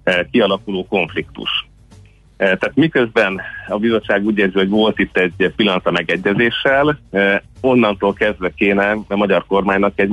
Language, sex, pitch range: Hungarian, male, 90-110 Hz